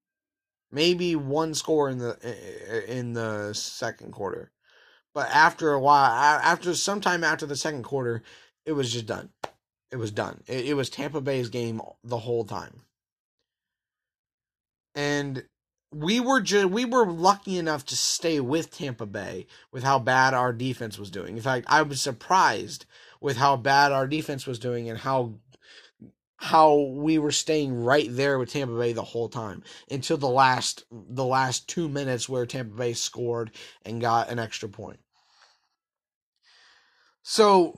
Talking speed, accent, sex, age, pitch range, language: 155 wpm, American, male, 20-39, 120-170 Hz, English